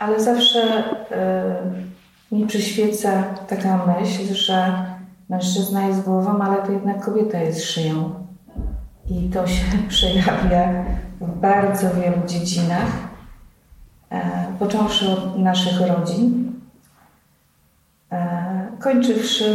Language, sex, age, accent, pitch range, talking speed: Polish, female, 40-59, native, 170-200 Hz, 90 wpm